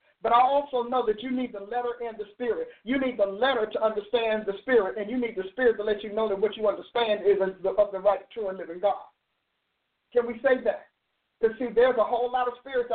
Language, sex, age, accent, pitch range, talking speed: English, male, 50-69, American, 215-255 Hz, 245 wpm